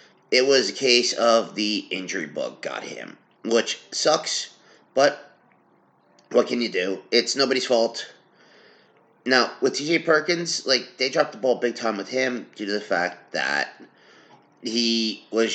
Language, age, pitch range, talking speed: English, 30-49, 110-135 Hz, 155 wpm